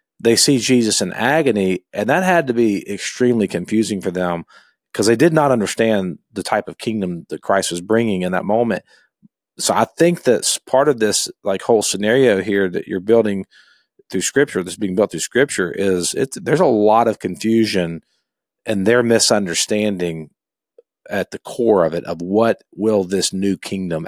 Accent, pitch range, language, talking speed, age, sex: American, 90-115 Hz, English, 180 wpm, 40-59, male